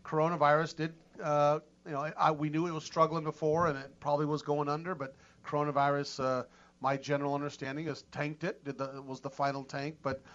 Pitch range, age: 140-170 Hz, 40-59